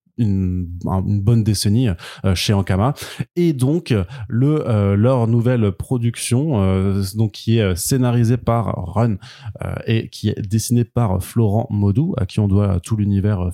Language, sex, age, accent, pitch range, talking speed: French, male, 20-39, French, 95-115 Hz, 150 wpm